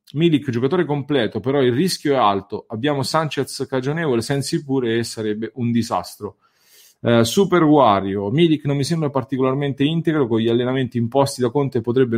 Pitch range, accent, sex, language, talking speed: 115-145 Hz, Italian, male, English, 160 wpm